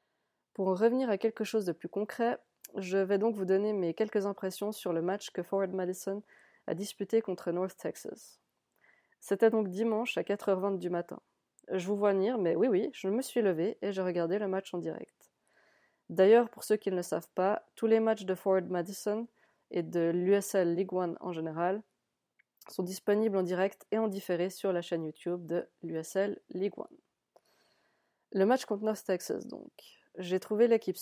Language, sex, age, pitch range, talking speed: French, female, 20-39, 180-205 Hz, 190 wpm